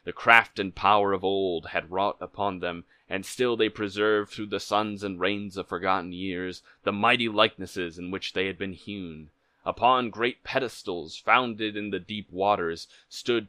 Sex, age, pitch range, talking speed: male, 20-39, 85-105 Hz, 180 wpm